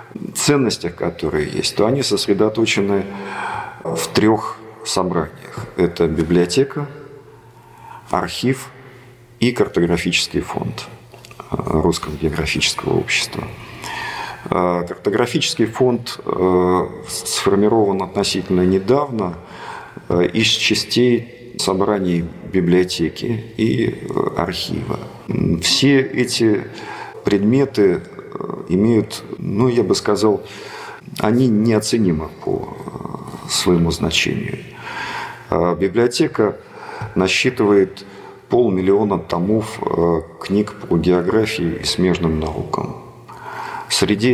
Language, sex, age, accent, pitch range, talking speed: Russian, male, 50-69, native, 90-120 Hz, 70 wpm